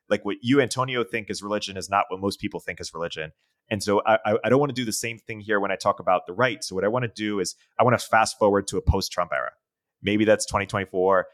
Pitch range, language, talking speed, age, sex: 95-115 Hz, English, 275 wpm, 30-49, male